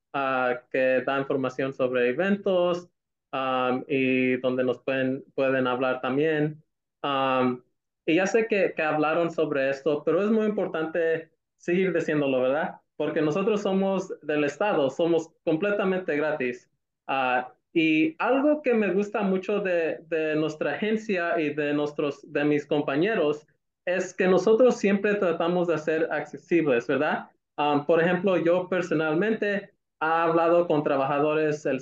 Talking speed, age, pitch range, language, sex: 140 wpm, 20-39, 140-175 Hz, Spanish, male